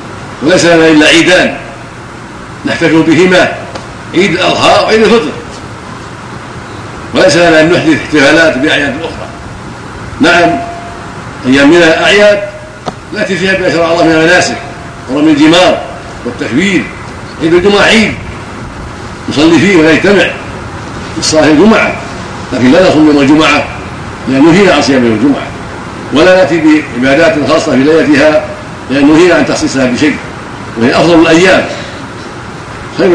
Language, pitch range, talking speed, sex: Arabic, 140-185 Hz, 120 wpm, male